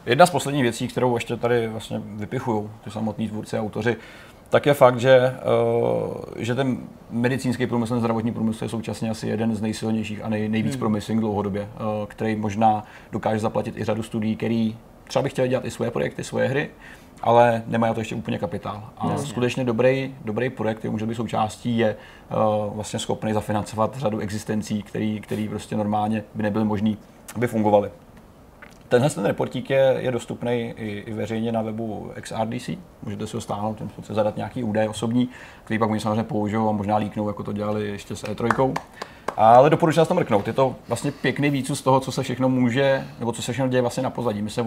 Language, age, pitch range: Czech, 30-49, 110-125 Hz